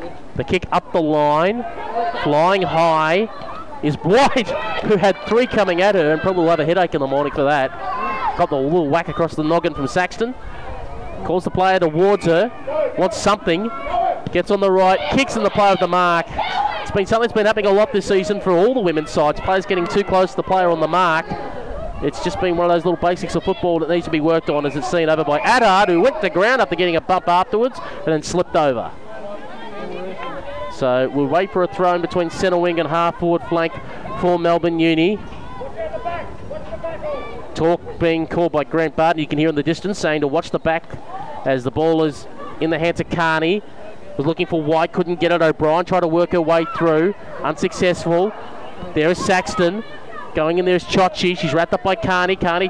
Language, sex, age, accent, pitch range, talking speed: English, male, 20-39, Australian, 160-190 Hz, 210 wpm